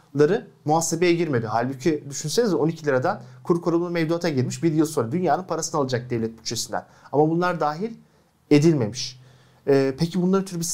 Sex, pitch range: male, 125-175 Hz